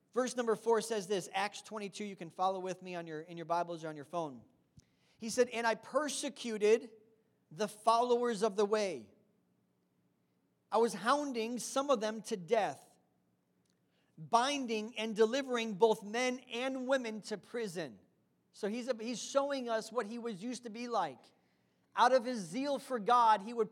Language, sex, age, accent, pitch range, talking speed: English, male, 40-59, American, 205-245 Hz, 175 wpm